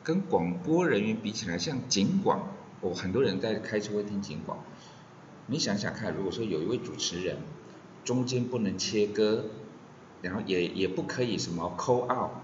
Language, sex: Chinese, male